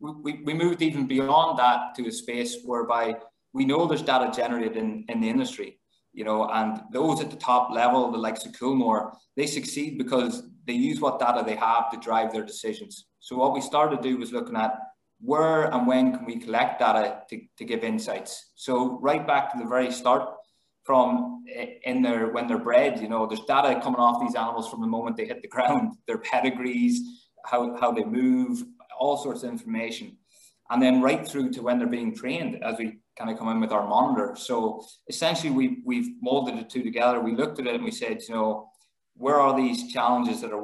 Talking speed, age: 210 wpm, 20-39